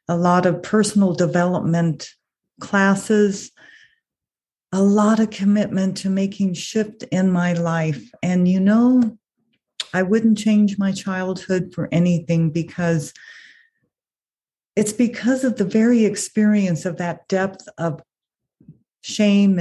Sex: female